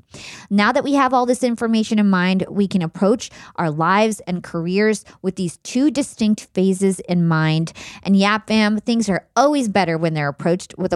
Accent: American